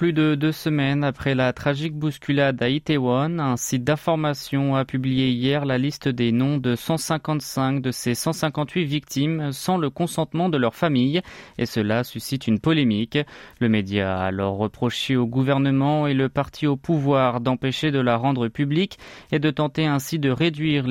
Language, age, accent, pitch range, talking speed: French, 20-39, French, 125-155 Hz, 170 wpm